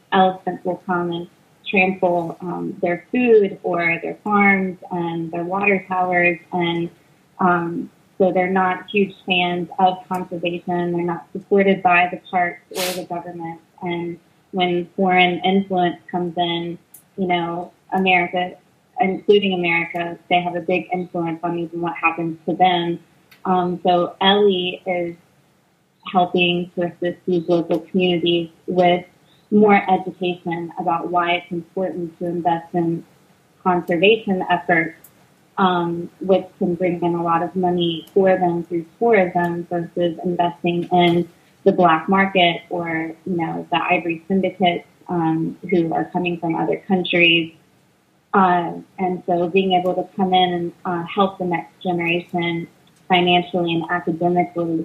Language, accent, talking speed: English, American, 140 wpm